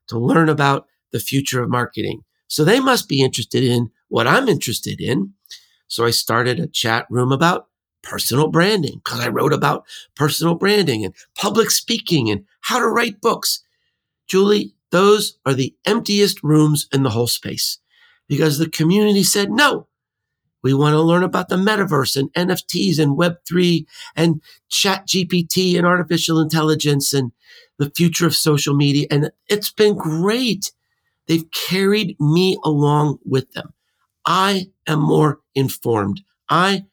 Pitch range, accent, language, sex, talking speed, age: 140-185 Hz, American, English, male, 150 wpm, 50-69